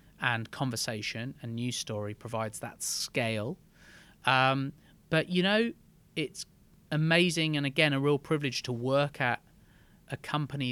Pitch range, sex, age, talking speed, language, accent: 110-140 Hz, male, 30-49, 135 wpm, English, British